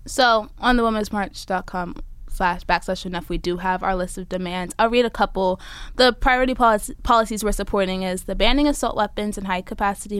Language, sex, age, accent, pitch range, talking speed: English, female, 20-39, American, 185-220 Hz, 190 wpm